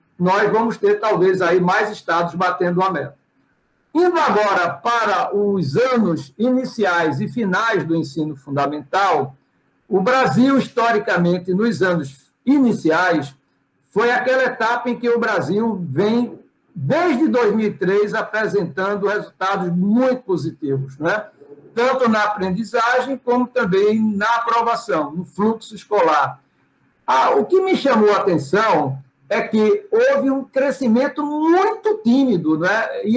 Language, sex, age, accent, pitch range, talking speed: Portuguese, male, 60-79, Brazilian, 185-255 Hz, 125 wpm